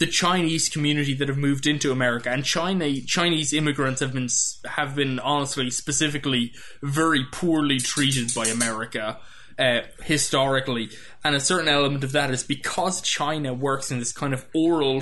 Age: 20-39